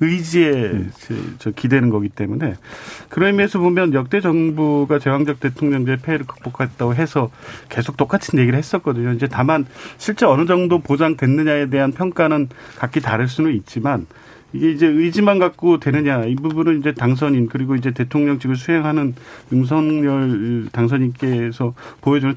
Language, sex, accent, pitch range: Korean, male, native, 125-170 Hz